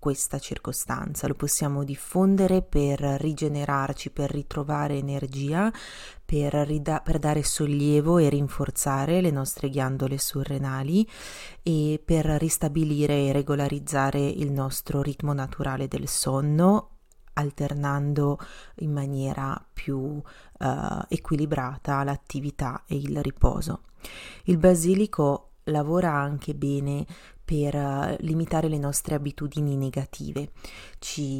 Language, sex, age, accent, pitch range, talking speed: Italian, female, 30-49, native, 140-160 Hz, 100 wpm